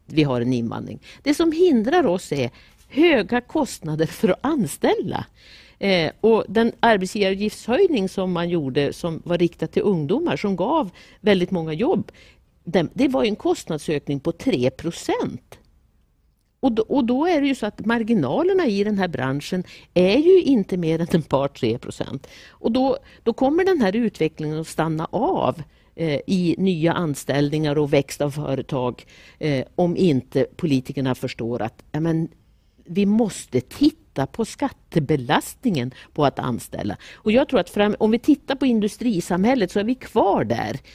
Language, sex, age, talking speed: Swedish, female, 60-79, 155 wpm